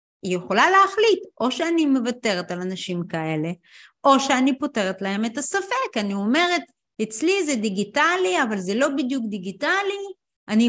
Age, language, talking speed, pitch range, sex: 30-49, Hebrew, 145 wpm, 220-330 Hz, female